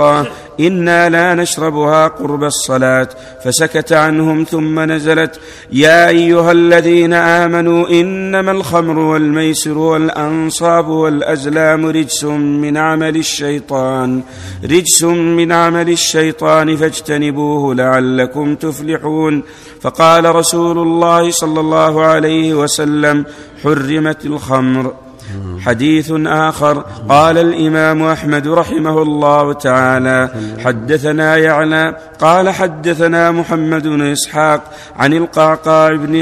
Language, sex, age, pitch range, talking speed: Arabic, male, 50-69, 145-160 Hz, 95 wpm